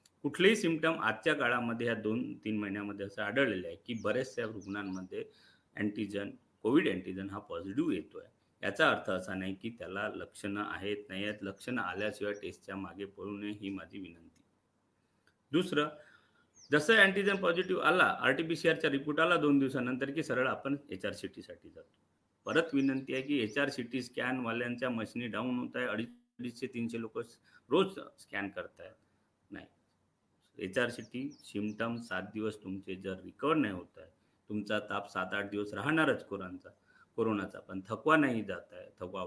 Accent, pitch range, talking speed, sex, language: native, 100-145 Hz, 145 wpm, male, Marathi